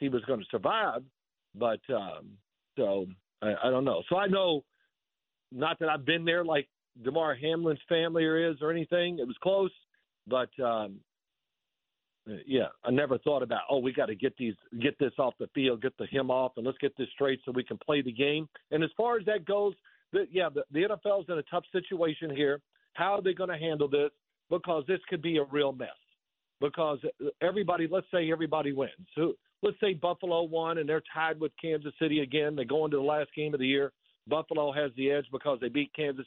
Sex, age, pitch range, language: male, 50-69, 140-170 Hz, English